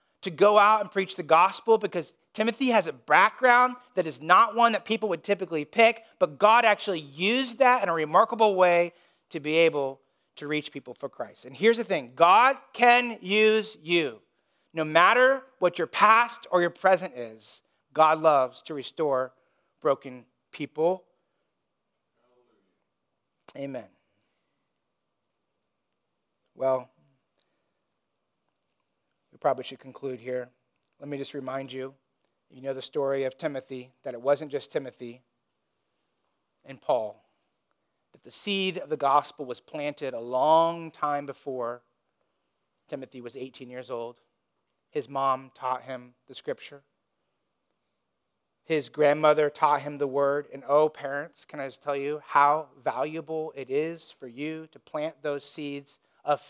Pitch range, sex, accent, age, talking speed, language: 135-185 Hz, male, American, 30-49, 140 wpm, English